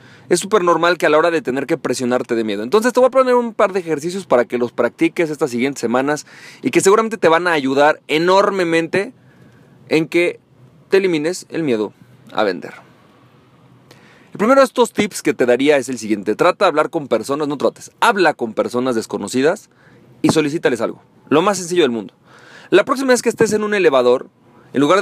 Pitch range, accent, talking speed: 145-205 Hz, Mexican, 205 wpm